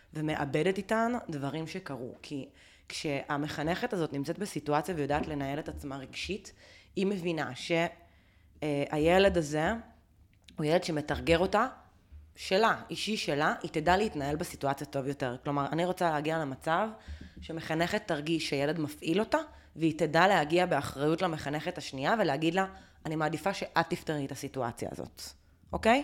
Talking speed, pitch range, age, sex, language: 130 wpm, 140-175 Hz, 20-39, female, Hebrew